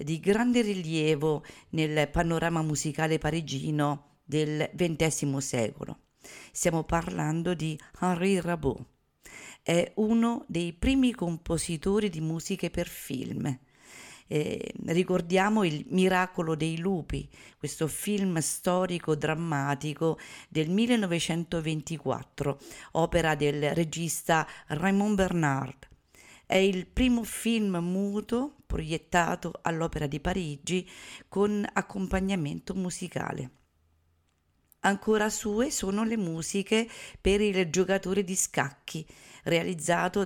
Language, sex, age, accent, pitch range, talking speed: Italian, female, 50-69, native, 155-195 Hz, 95 wpm